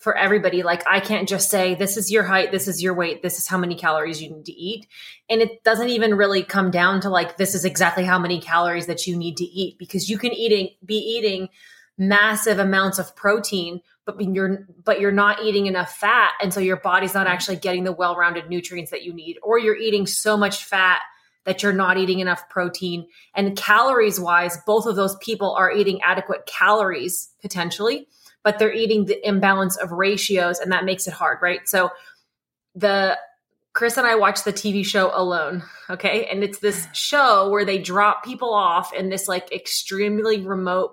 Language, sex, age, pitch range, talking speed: English, female, 20-39, 180-210 Hz, 200 wpm